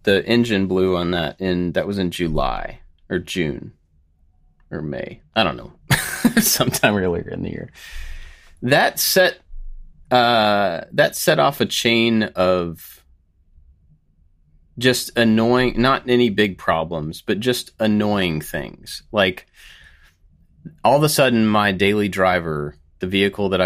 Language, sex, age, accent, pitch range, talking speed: English, male, 30-49, American, 85-110 Hz, 130 wpm